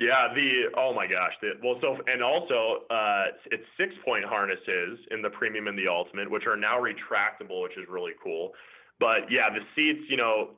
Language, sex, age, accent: English, male, 20-39, American